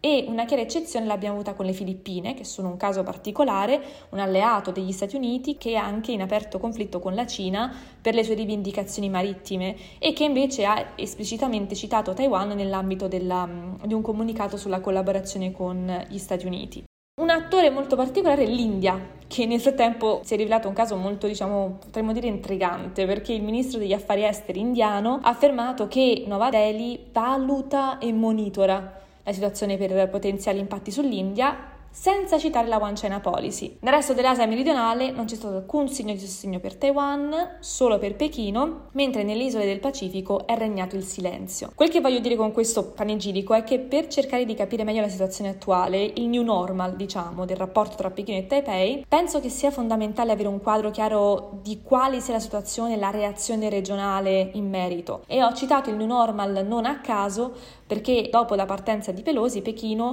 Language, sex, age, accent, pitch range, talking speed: Italian, female, 20-39, native, 195-245 Hz, 185 wpm